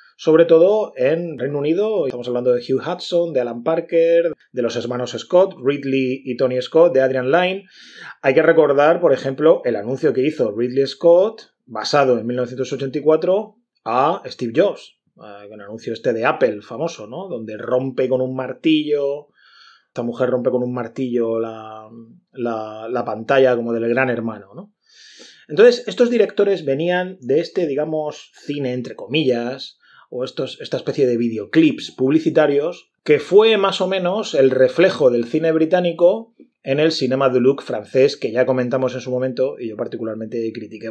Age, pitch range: 30-49, 125-180 Hz